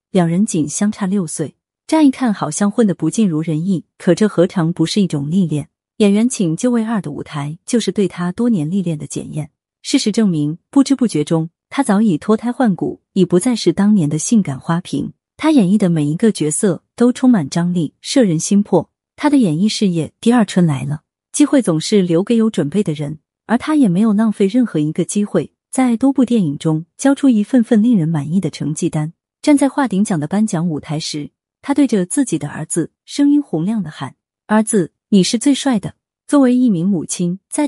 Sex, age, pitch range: female, 30-49, 160-230 Hz